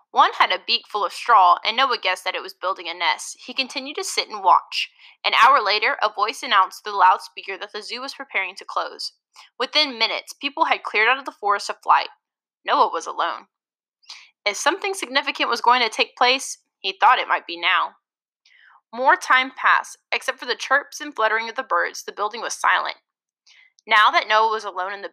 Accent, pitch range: American, 205-280 Hz